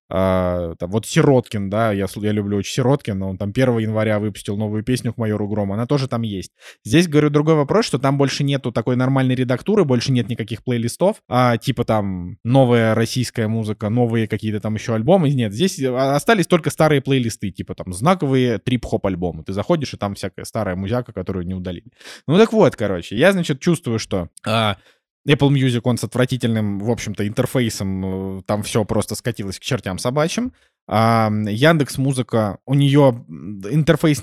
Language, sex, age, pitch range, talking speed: Russian, male, 20-39, 105-135 Hz, 175 wpm